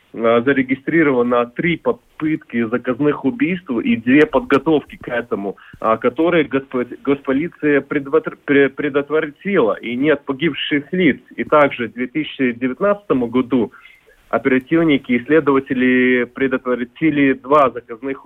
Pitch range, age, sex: 125-150 Hz, 30-49, male